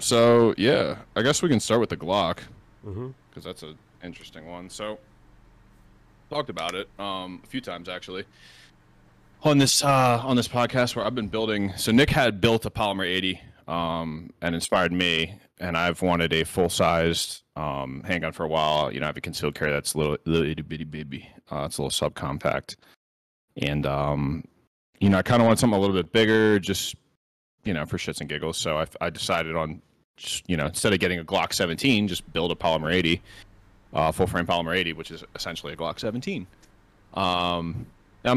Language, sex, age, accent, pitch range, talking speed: English, male, 20-39, American, 80-100 Hz, 195 wpm